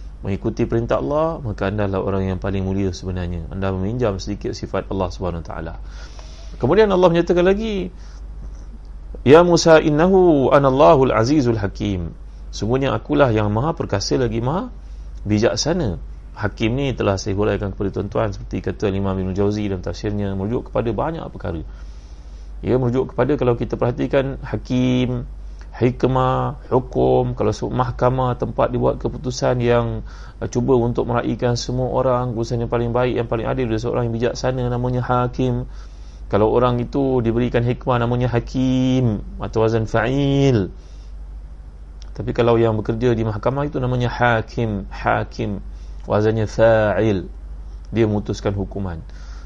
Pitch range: 95-125 Hz